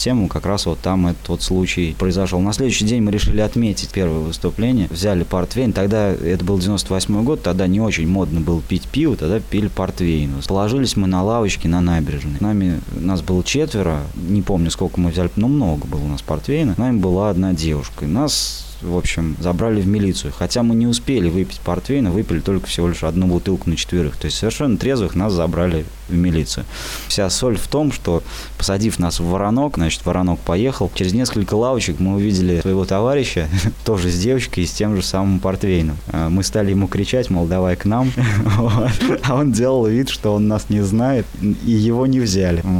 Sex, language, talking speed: male, Russian, 195 wpm